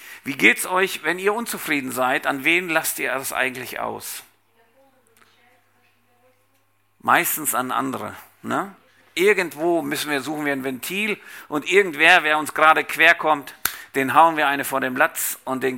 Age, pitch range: 50-69, 125-155 Hz